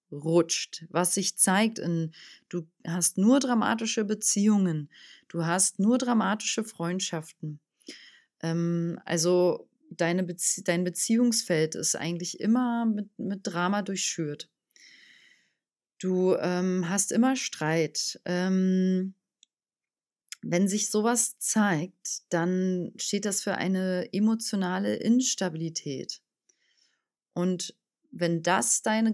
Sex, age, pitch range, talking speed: female, 30-49, 170-215 Hz, 100 wpm